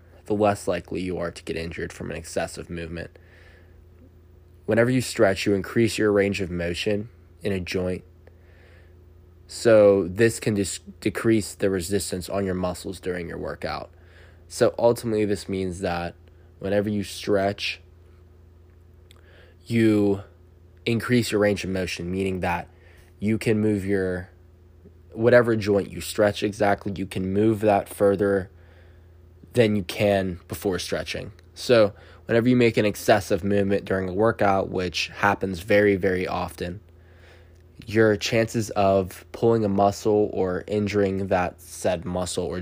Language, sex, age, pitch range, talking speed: English, male, 20-39, 85-100 Hz, 140 wpm